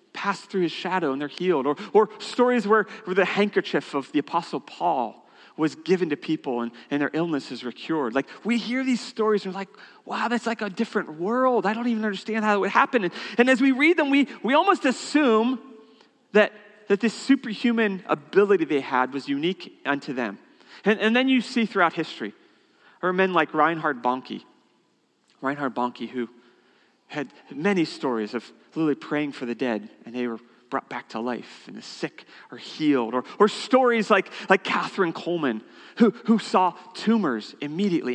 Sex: male